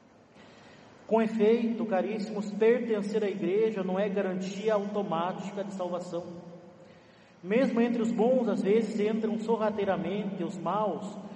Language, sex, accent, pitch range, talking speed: Portuguese, male, Brazilian, 195-230 Hz, 115 wpm